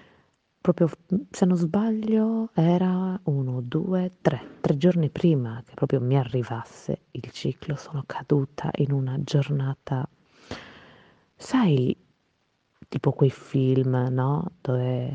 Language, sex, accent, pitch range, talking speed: Italian, female, native, 140-175 Hz, 110 wpm